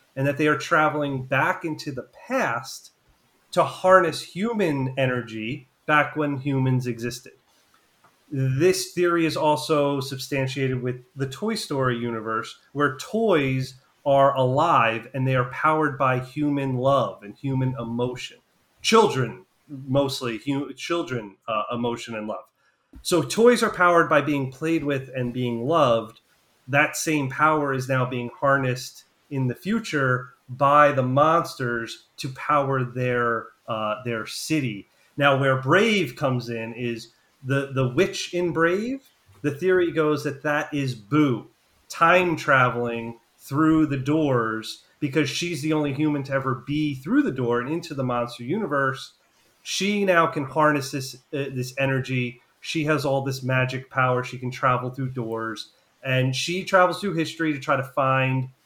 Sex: male